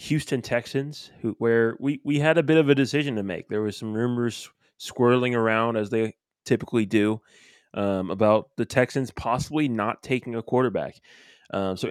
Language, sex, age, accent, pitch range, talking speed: English, male, 20-39, American, 105-125 Hz, 175 wpm